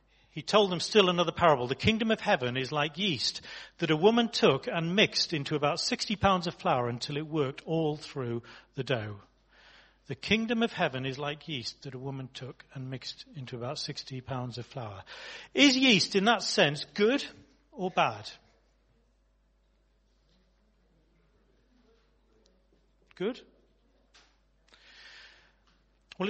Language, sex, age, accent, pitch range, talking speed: English, male, 40-59, British, 135-205 Hz, 140 wpm